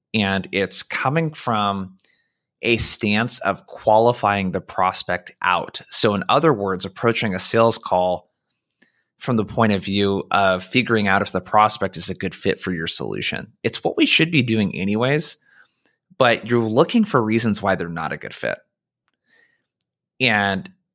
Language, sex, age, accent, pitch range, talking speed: English, male, 20-39, American, 95-125 Hz, 160 wpm